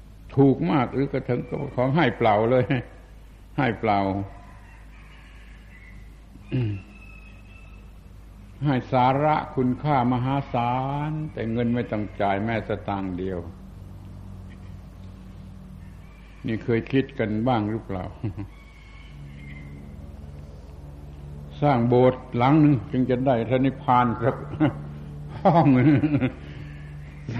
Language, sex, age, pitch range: Thai, male, 70-89, 95-130 Hz